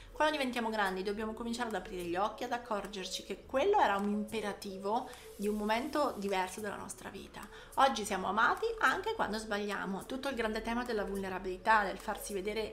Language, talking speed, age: Italian, 180 wpm, 30-49